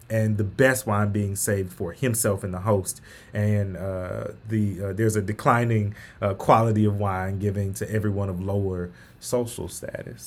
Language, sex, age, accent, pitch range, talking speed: English, male, 20-39, American, 95-110 Hz, 170 wpm